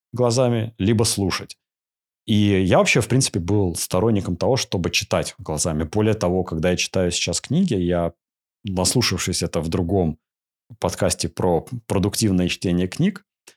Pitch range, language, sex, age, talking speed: 85-105 Hz, Russian, male, 30-49, 135 wpm